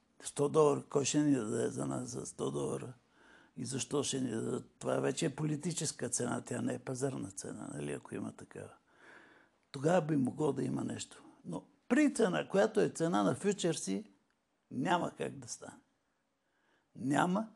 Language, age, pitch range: Bulgarian, 60-79, 145-170 Hz